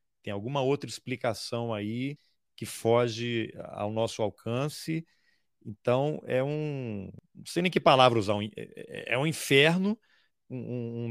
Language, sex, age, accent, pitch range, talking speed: Portuguese, male, 40-59, Brazilian, 110-150 Hz, 120 wpm